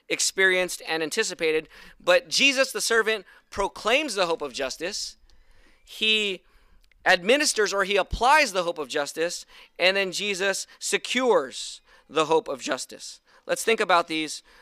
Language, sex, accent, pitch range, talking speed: English, male, American, 195-265 Hz, 135 wpm